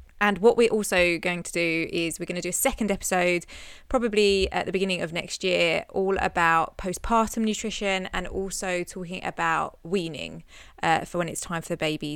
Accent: British